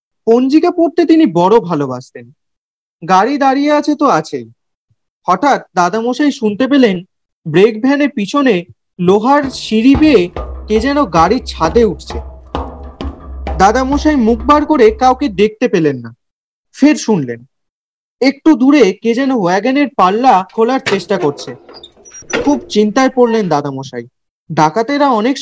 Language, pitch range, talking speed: Bengali, 175-265 Hz, 95 wpm